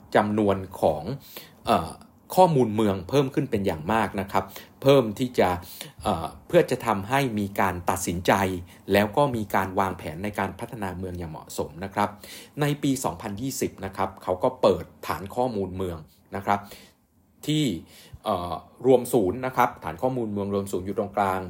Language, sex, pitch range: Thai, male, 95-130 Hz